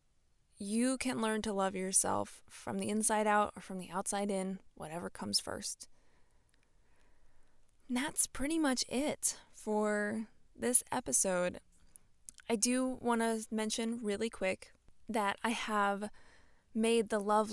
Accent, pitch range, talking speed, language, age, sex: American, 195-235 Hz, 130 wpm, English, 20-39, female